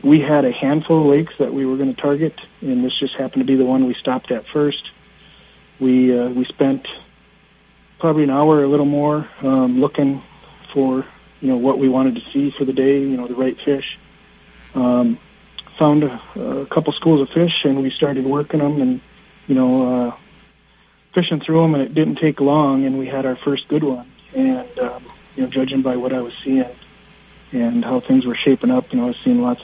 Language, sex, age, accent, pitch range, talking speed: English, male, 40-59, American, 130-170 Hz, 215 wpm